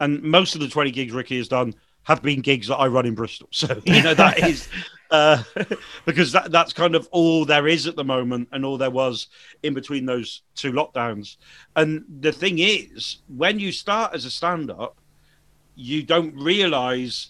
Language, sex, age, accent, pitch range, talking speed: English, male, 40-59, British, 135-170 Hz, 190 wpm